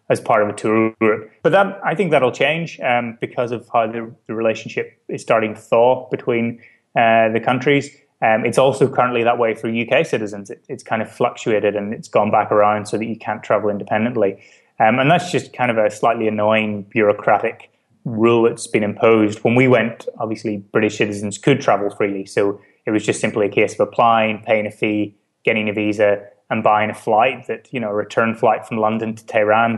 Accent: British